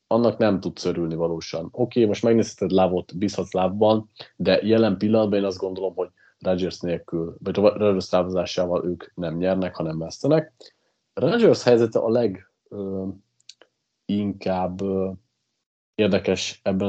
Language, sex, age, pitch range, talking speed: Hungarian, male, 30-49, 95-115 Hz, 125 wpm